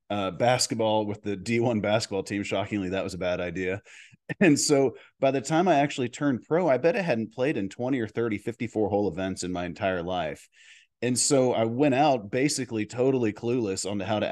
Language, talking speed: English, 205 wpm